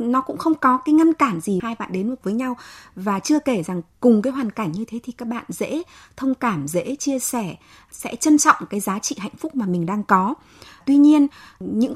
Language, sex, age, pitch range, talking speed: Vietnamese, female, 20-39, 195-270 Hz, 240 wpm